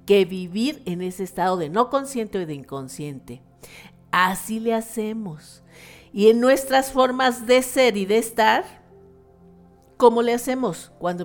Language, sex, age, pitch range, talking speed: Spanish, female, 50-69, 180-225 Hz, 145 wpm